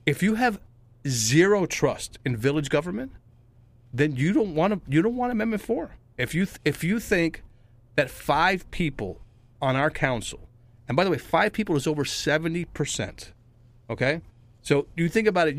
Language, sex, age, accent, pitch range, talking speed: English, male, 40-59, American, 120-160 Hz, 175 wpm